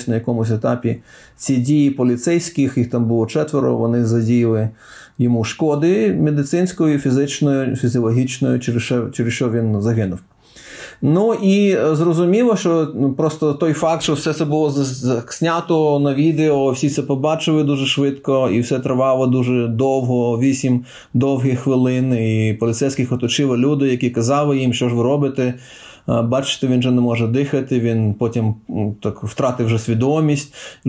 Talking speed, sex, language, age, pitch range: 140 wpm, male, Ukrainian, 30-49, 125-155 Hz